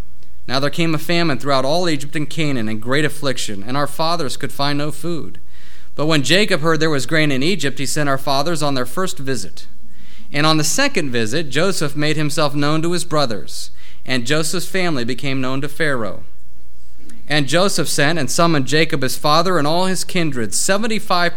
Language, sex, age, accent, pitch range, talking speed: English, male, 30-49, American, 125-170 Hz, 195 wpm